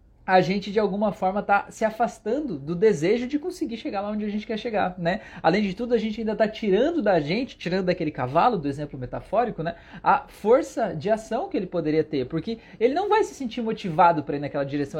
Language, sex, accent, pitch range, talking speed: Portuguese, male, Brazilian, 160-220 Hz, 225 wpm